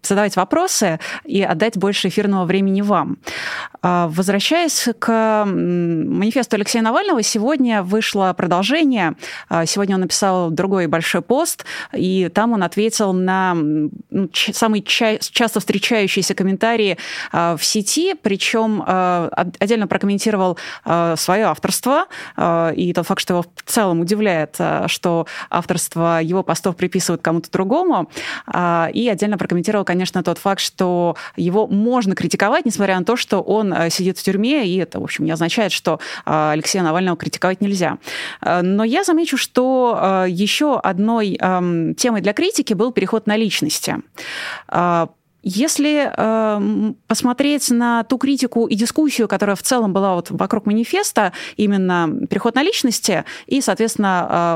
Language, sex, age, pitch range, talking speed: Russian, female, 20-39, 180-230 Hz, 130 wpm